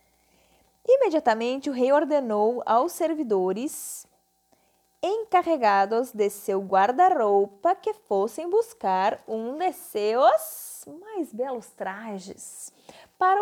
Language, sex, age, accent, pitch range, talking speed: Portuguese, female, 20-39, Brazilian, 215-330 Hz, 90 wpm